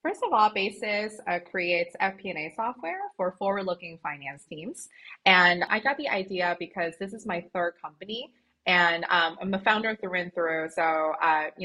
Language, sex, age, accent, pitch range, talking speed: English, female, 20-39, American, 165-205 Hz, 180 wpm